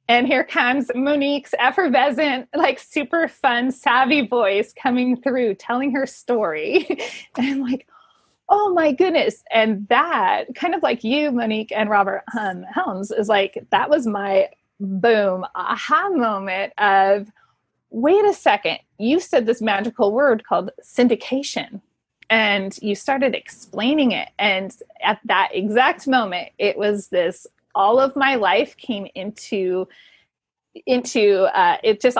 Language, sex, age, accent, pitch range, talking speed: English, female, 30-49, American, 205-275 Hz, 140 wpm